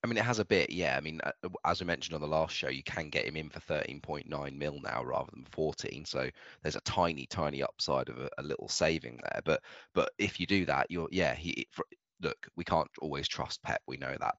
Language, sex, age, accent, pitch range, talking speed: English, male, 20-39, British, 70-85 Hz, 245 wpm